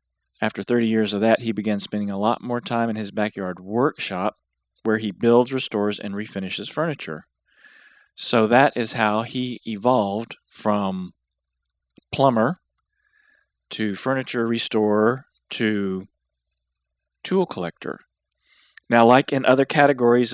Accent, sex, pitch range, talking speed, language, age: American, male, 95-120 Hz, 125 wpm, English, 40-59